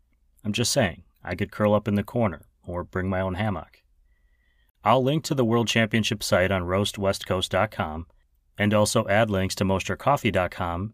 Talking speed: 165 wpm